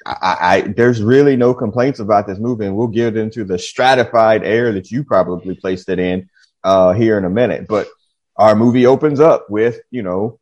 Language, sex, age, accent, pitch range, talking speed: English, male, 30-49, American, 95-125 Hz, 200 wpm